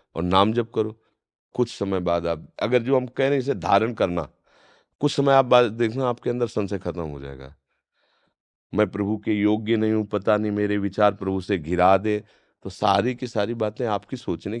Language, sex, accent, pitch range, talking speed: Hindi, male, native, 95-115 Hz, 200 wpm